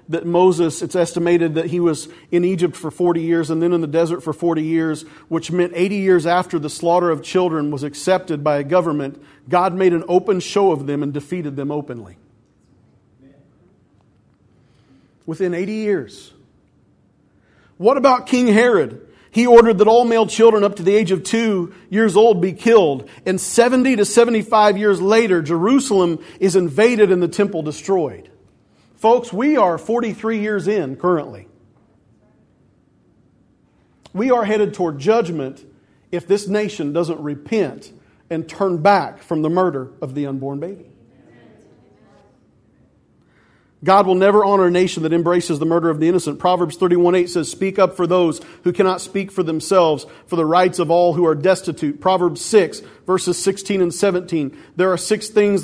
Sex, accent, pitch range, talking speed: male, American, 160-195 Hz, 165 wpm